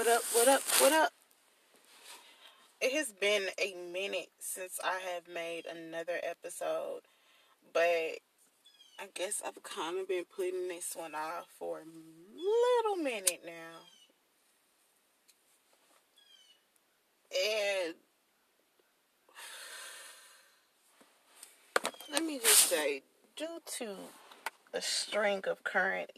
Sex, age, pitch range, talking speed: female, 20-39, 170-275 Hz, 100 wpm